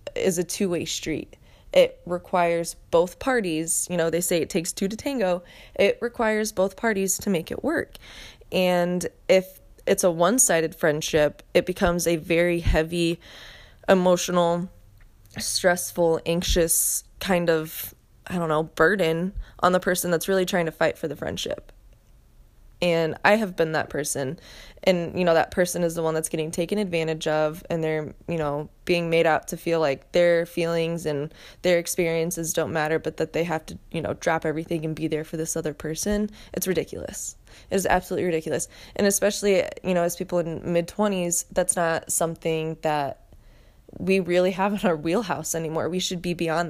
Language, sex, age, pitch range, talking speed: English, female, 20-39, 160-180 Hz, 175 wpm